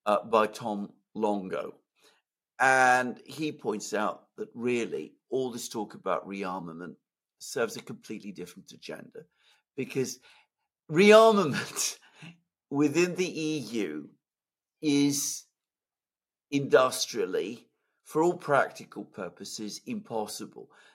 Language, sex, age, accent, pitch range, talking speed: English, male, 50-69, British, 115-185 Hz, 90 wpm